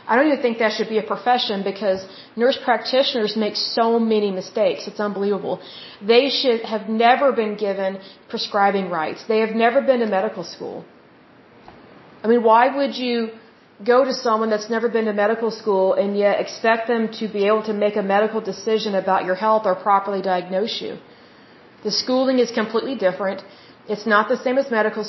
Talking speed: 185 wpm